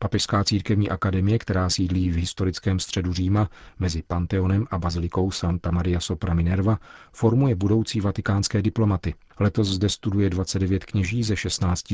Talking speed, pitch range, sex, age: 140 wpm, 90-100 Hz, male, 40-59